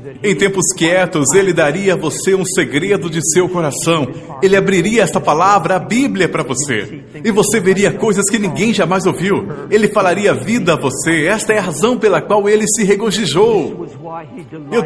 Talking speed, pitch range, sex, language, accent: 175 wpm, 185-225 Hz, male, Portuguese, Brazilian